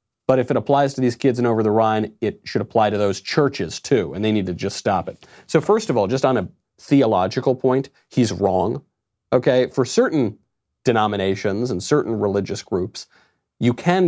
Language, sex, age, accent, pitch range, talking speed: English, male, 40-59, American, 105-140 Hz, 195 wpm